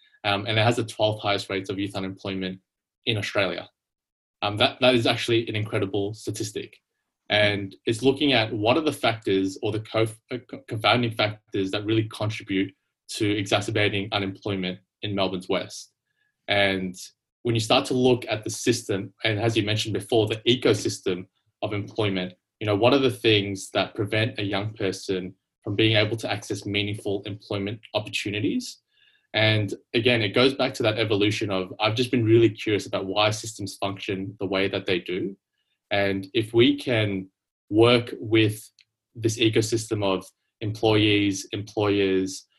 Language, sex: English, male